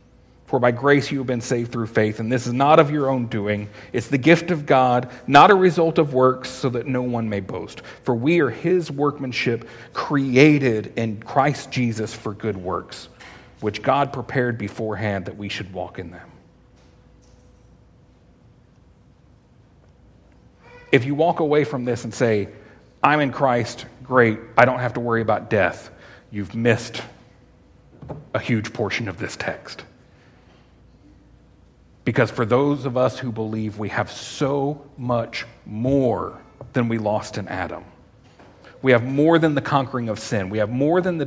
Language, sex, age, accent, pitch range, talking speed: English, male, 40-59, American, 110-145 Hz, 165 wpm